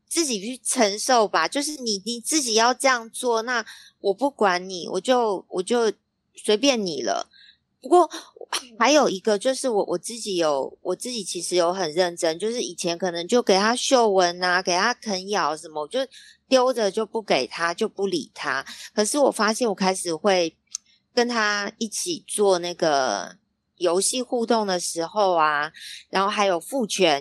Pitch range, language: 175-235 Hz, Chinese